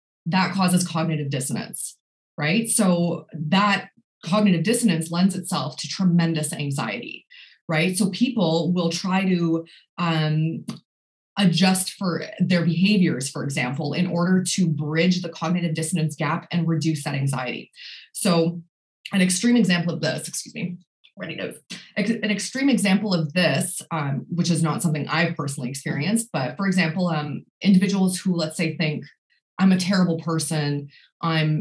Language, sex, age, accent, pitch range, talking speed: English, female, 20-39, American, 150-180 Hz, 140 wpm